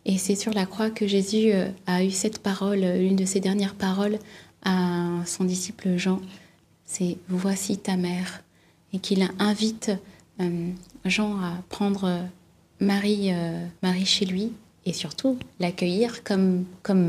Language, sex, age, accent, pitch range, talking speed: French, female, 20-39, French, 170-195 Hz, 145 wpm